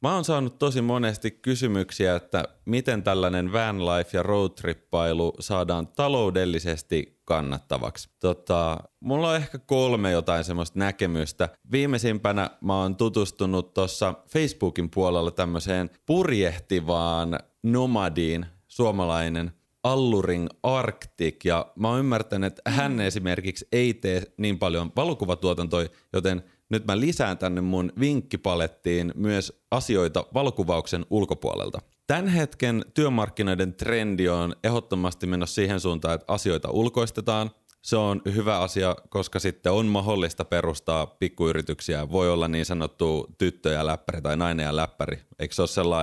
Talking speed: 125 wpm